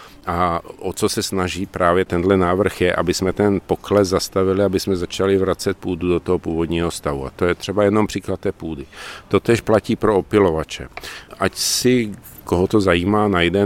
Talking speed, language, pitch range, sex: 185 wpm, Czech, 85-100 Hz, male